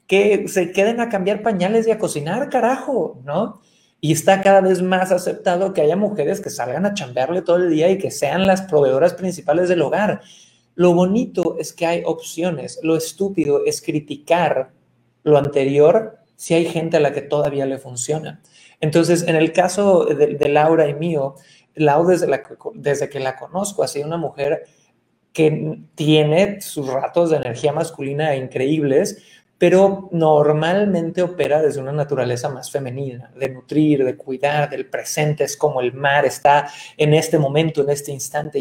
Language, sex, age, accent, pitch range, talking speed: Spanish, male, 30-49, Mexican, 145-185 Hz, 170 wpm